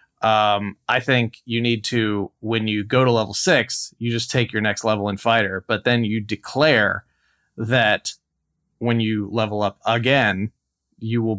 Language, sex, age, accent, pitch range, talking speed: English, male, 30-49, American, 105-120 Hz, 170 wpm